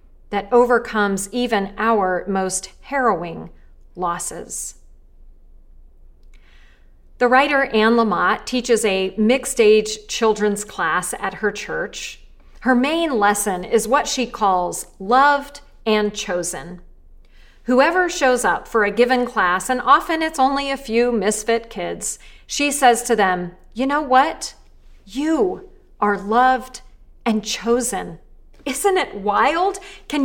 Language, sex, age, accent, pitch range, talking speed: English, female, 40-59, American, 200-275 Hz, 120 wpm